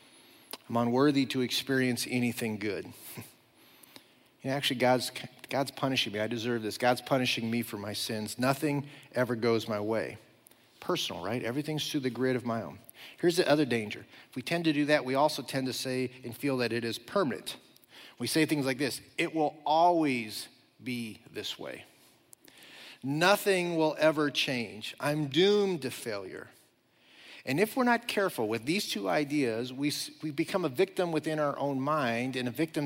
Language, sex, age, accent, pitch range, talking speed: English, male, 40-59, American, 125-165 Hz, 175 wpm